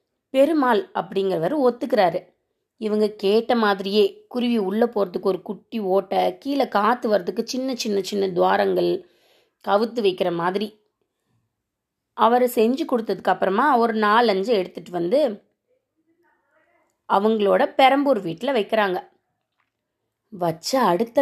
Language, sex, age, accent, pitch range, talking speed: Tamil, female, 20-39, native, 200-275 Hz, 100 wpm